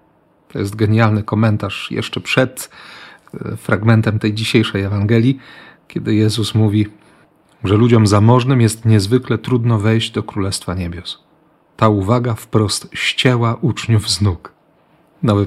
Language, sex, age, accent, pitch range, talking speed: Polish, male, 40-59, native, 105-130 Hz, 120 wpm